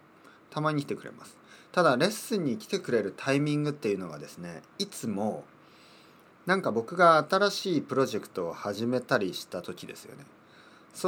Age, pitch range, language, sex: 40-59, 100-165 Hz, Japanese, male